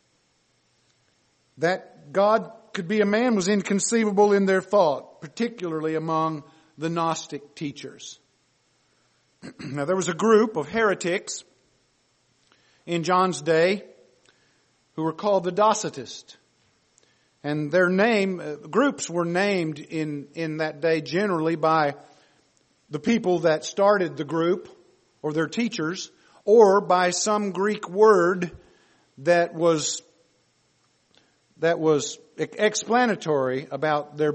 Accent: American